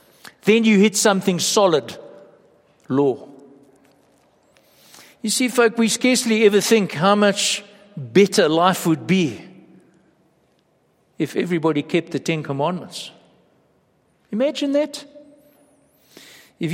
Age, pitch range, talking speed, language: 60-79, 175-225 Hz, 100 wpm, English